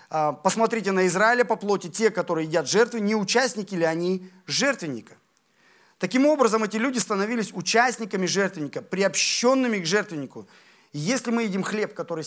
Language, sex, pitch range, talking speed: Russian, male, 170-230 Hz, 145 wpm